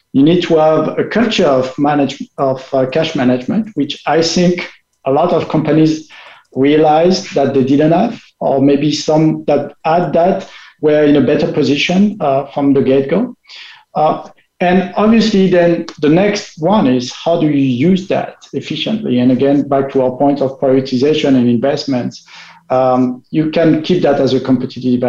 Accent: French